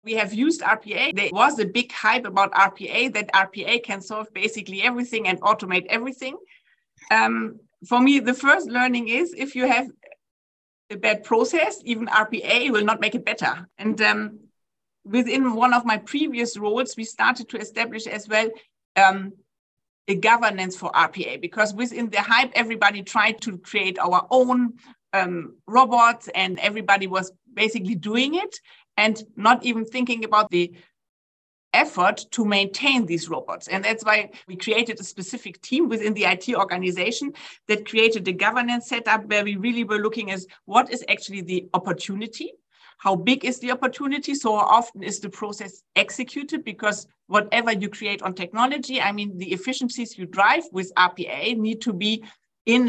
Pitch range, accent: 195-245 Hz, German